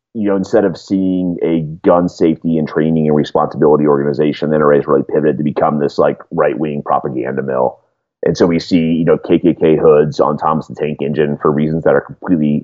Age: 30-49